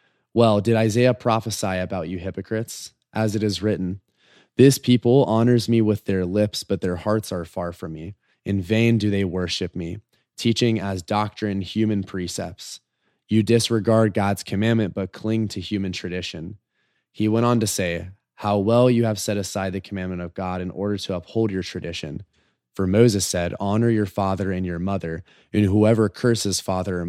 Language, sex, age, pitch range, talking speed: English, male, 20-39, 90-110 Hz, 175 wpm